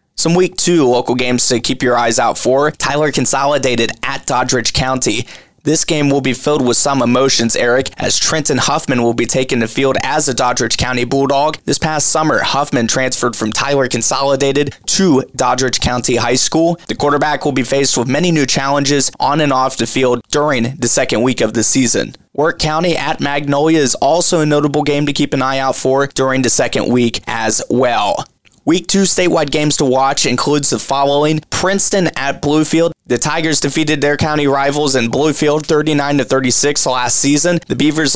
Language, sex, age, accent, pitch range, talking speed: English, male, 20-39, American, 130-150 Hz, 185 wpm